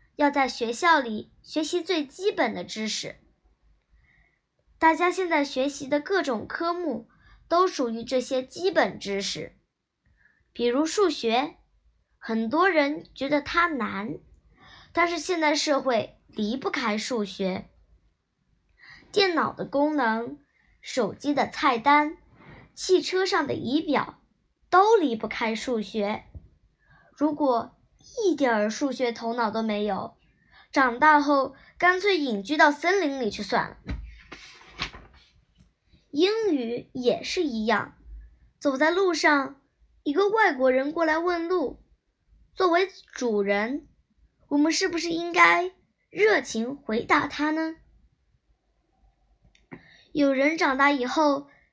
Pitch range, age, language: 235-335 Hz, 10-29, Chinese